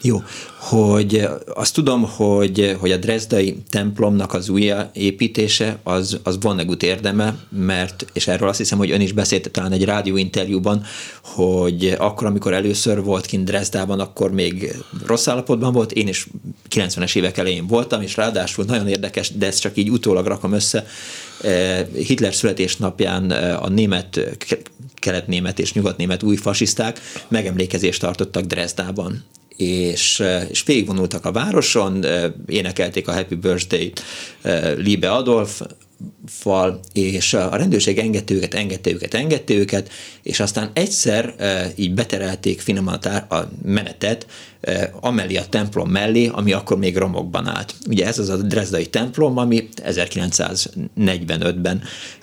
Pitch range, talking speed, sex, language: 95-110 Hz, 135 wpm, male, Hungarian